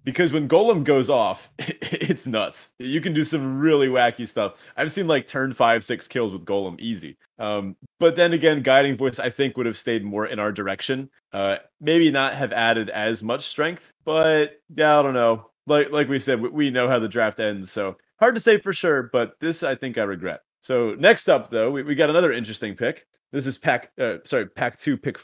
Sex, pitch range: male, 110-150 Hz